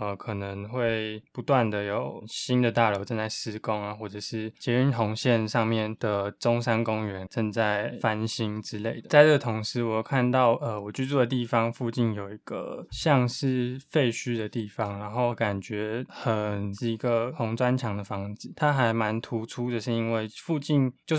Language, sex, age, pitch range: Chinese, male, 20-39, 110-125 Hz